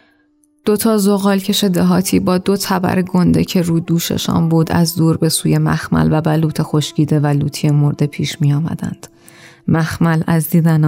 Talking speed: 160 wpm